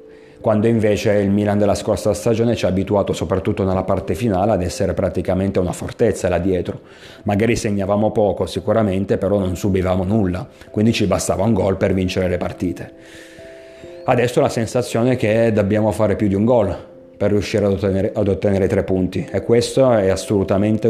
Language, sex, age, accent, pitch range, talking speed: Italian, male, 30-49, native, 95-110 Hz, 175 wpm